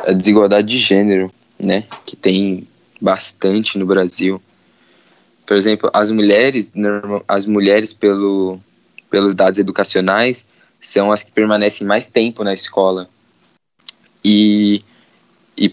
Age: 10-29